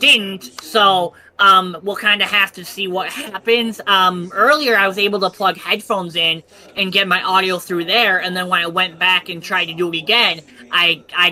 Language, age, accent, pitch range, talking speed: English, 10-29, American, 170-200 Hz, 210 wpm